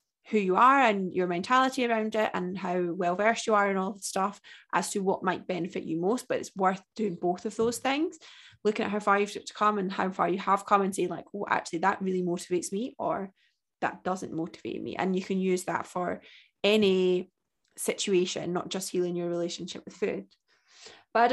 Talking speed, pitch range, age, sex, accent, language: 210 wpm, 190-240 Hz, 20-39, female, British, English